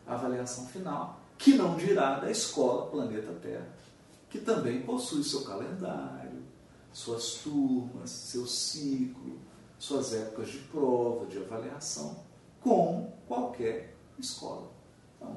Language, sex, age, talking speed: Portuguese, male, 40-59, 115 wpm